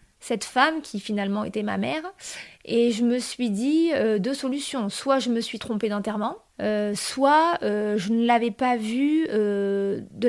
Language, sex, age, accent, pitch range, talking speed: French, female, 20-39, French, 210-250 Hz, 180 wpm